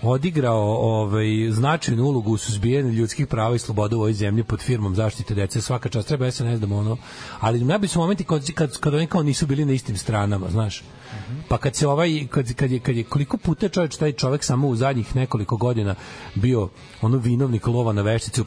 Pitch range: 110-130 Hz